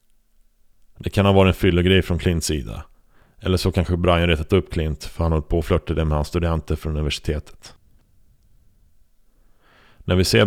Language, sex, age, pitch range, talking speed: Swedish, male, 30-49, 80-90 Hz, 160 wpm